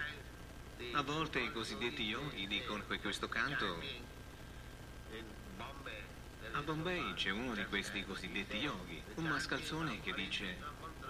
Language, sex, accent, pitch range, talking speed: Italian, male, native, 100-160 Hz, 115 wpm